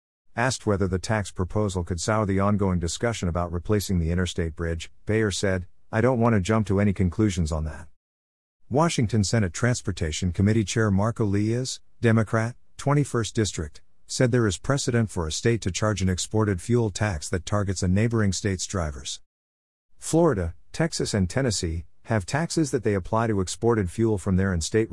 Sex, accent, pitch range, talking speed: male, American, 90-115 Hz, 170 wpm